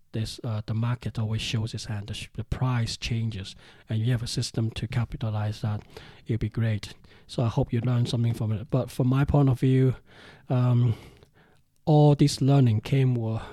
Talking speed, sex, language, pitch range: 195 wpm, male, English, 110-125 Hz